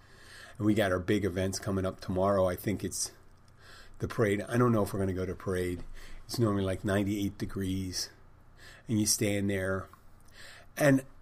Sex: male